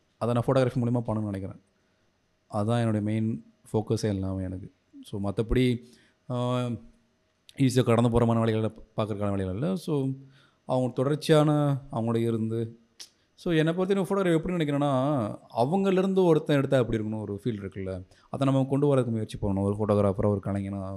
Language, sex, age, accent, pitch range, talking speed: Tamil, male, 30-49, native, 110-150 Hz, 150 wpm